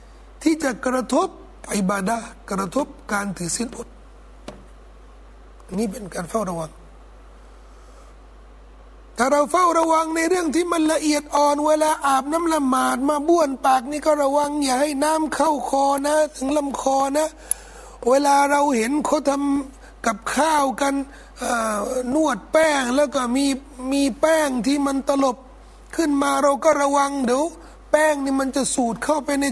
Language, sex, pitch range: Thai, male, 245-295 Hz